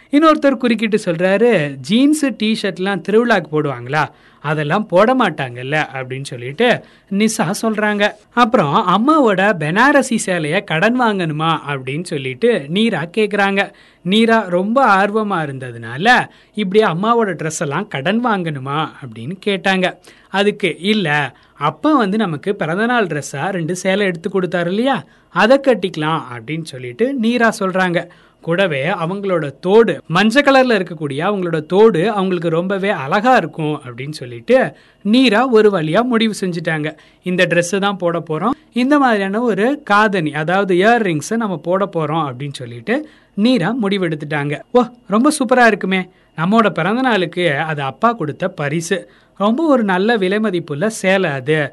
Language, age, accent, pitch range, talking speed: Tamil, 20-39, native, 160-225 Hz, 120 wpm